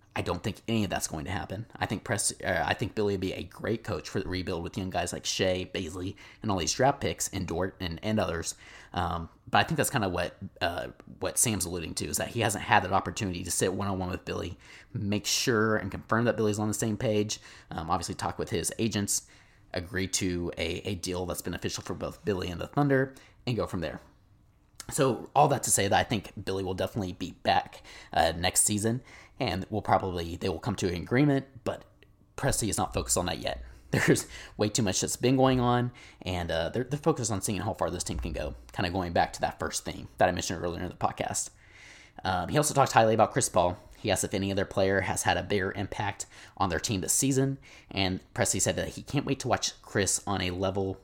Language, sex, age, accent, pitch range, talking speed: English, male, 30-49, American, 90-110 Hz, 240 wpm